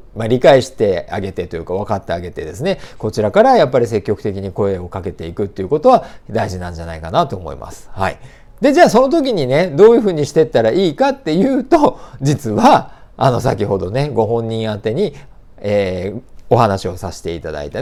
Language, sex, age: Japanese, male, 40-59